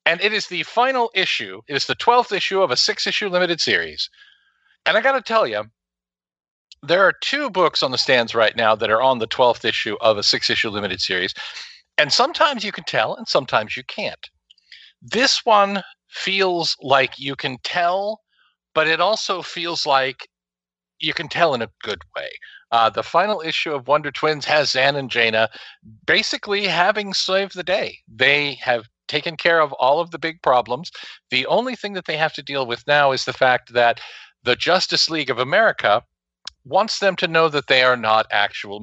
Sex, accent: male, American